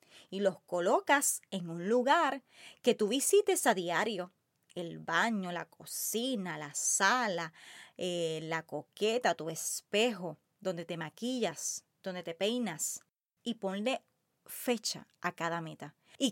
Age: 20-39